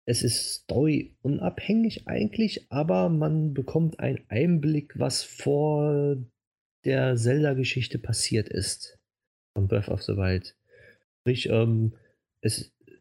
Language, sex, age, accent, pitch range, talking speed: German, male, 30-49, German, 110-150 Hz, 105 wpm